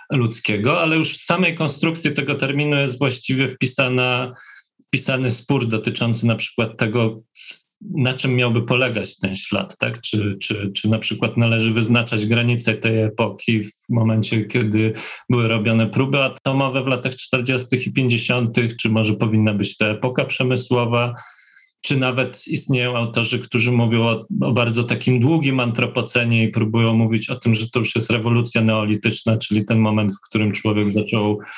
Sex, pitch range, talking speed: male, 110-130 Hz, 160 wpm